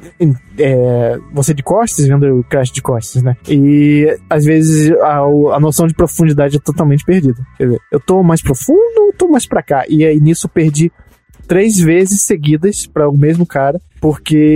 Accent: Brazilian